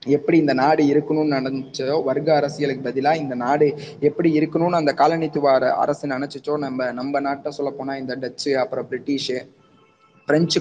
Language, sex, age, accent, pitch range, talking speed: Tamil, male, 20-39, native, 125-150 Hz, 140 wpm